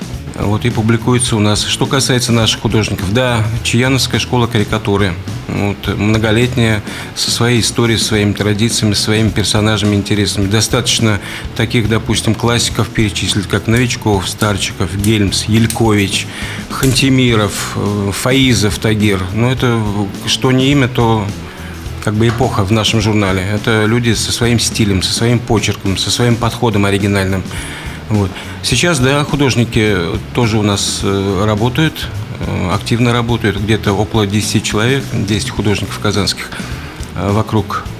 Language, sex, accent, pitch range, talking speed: Russian, male, native, 100-120 Hz, 125 wpm